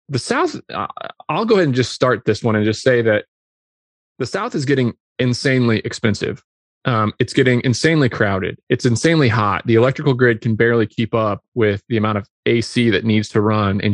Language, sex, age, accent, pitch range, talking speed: English, male, 30-49, American, 105-130 Hz, 200 wpm